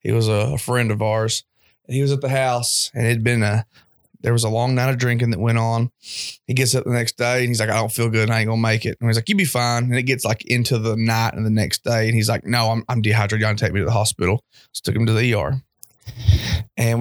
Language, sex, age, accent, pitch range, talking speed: English, male, 20-39, American, 115-130 Hz, 305 wpm